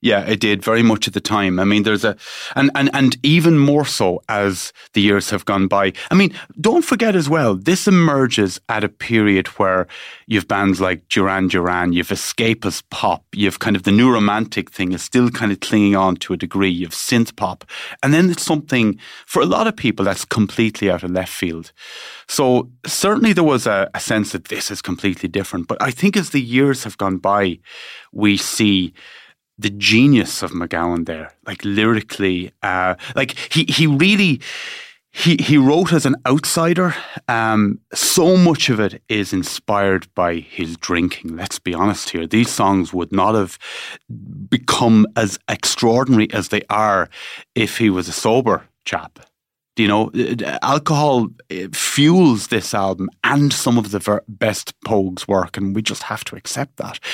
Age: 30-49